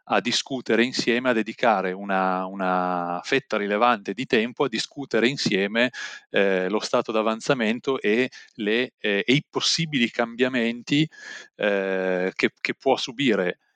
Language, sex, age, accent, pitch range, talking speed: Italian, male, 30-49, native, 105-135 Hz, 125 wpm